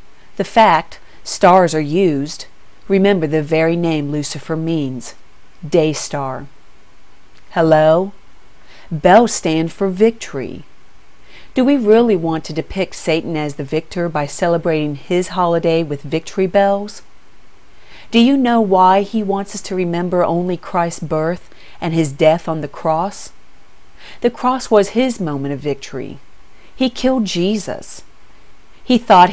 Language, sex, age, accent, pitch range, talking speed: English, female, 40-59, American, 155-200 Hz, 135 wpm